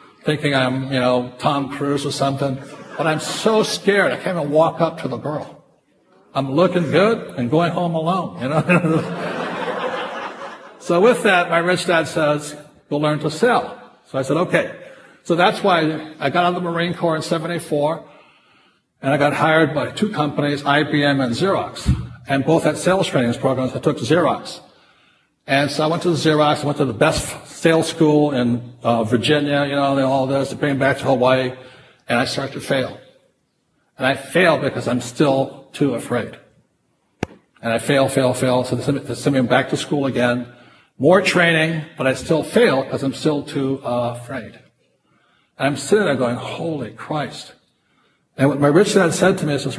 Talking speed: 185 wpm